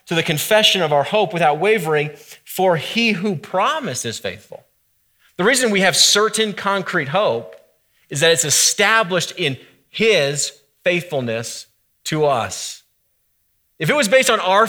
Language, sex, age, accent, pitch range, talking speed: English, male, 30-49, American, 160-215 Hz, 145 wpm